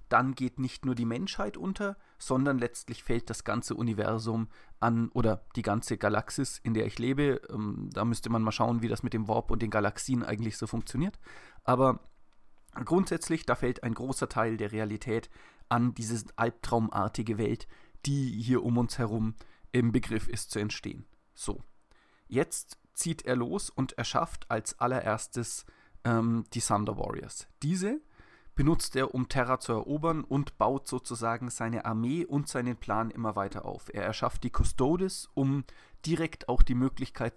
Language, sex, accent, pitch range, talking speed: German, male, German, 115-140 Hz, 165 wpm